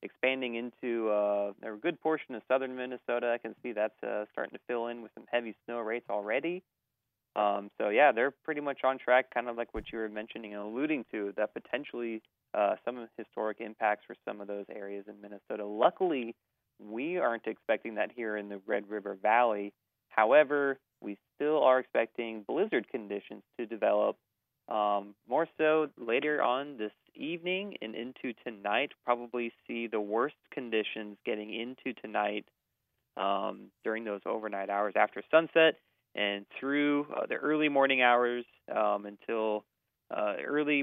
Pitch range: 105-130 Hz